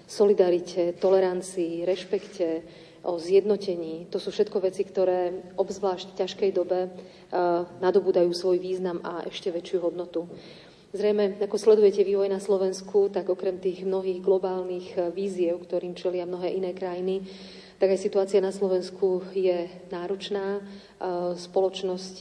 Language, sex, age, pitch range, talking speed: Slovak, female, 40-59, 175-195 Hz, 120 wpm